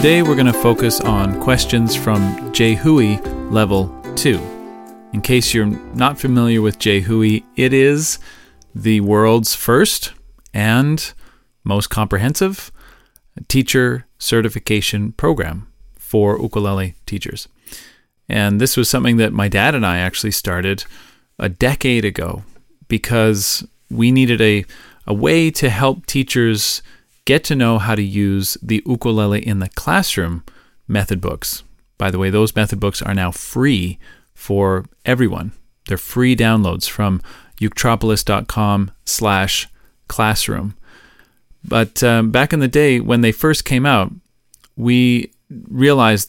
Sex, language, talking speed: male, English, 130 wpm